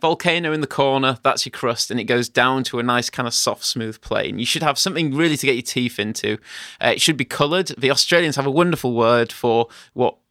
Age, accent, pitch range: 20-39, British, 120-150 Hz